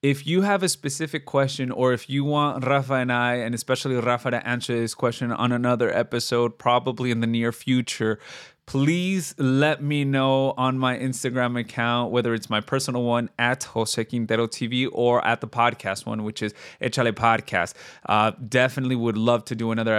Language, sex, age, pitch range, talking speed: English, male, 20-39, 115-135 Hz, 185 wpm